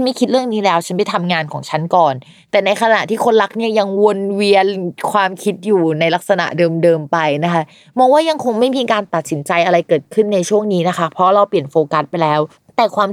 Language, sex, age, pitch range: Thai, female, 20-39, 160-205 Hz